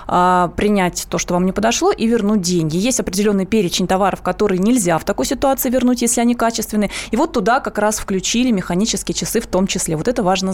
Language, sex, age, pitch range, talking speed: Russian, female, 20-39, 190-240 Hz, 205 wpm